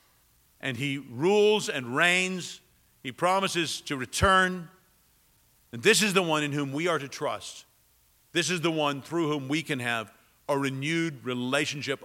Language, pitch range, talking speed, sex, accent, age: English, 130-185 Hz, 160 wpm, male, American, 50-69